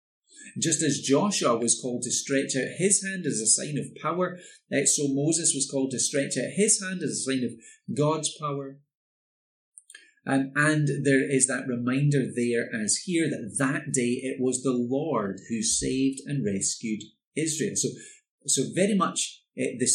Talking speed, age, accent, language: 170 wpm, 30-49, British, English